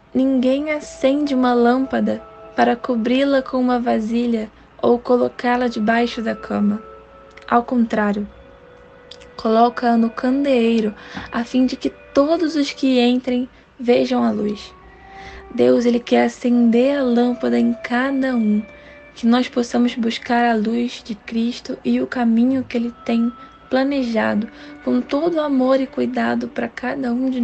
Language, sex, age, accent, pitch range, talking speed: Portuguese, female, 10-29, Brazilian, 220-255 Hz, 135 wpm